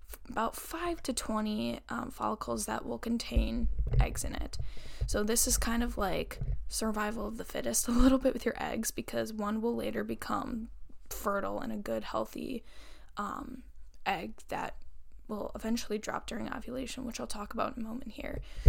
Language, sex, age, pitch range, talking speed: English, female, 10-29, 210-255 Hz, 175 wpm